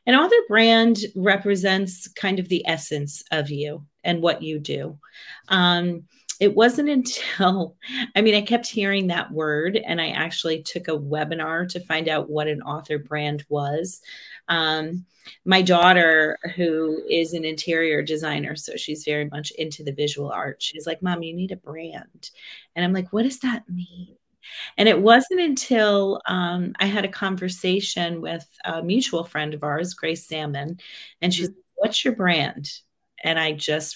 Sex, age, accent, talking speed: female, 30-49, American, 170 wpm